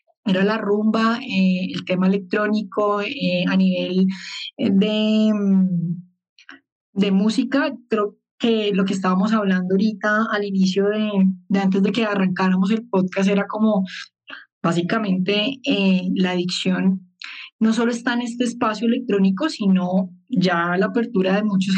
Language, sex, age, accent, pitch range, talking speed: Spanish, female, 20-39, Colombian, 190-235 Hz, 140 wpm